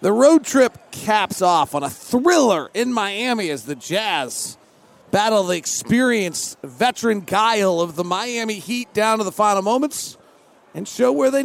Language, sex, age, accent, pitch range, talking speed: English, male, 40-59, American, 165-225 Hz, 160 wpm